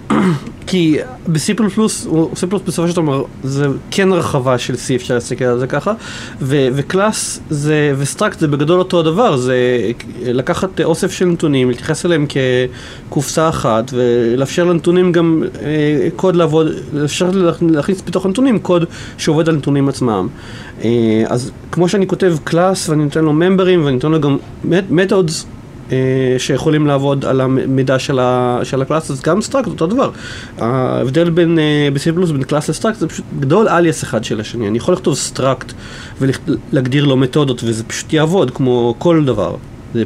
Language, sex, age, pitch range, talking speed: Hebrew, male, 30-49, 125-170 Hz, 150 wpm